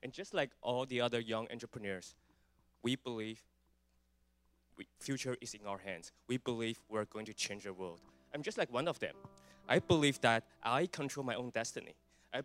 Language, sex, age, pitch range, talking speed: English, male, 20-39, 90-135 Hz, 190 wpm